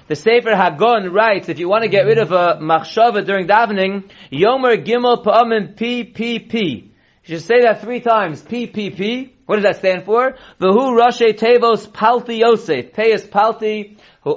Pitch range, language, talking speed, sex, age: 185-225 Hz, English, 165 wpm, male, 30-49